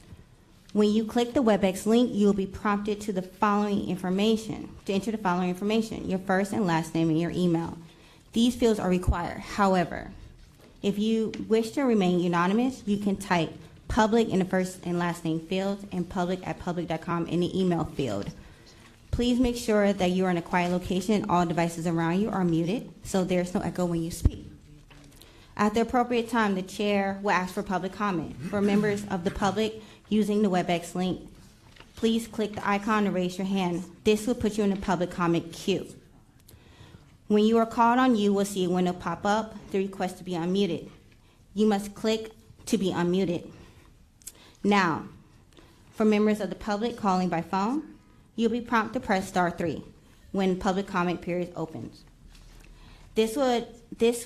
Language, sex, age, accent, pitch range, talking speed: English, female, 20-39, American, 175-215 Hz, 185 wpm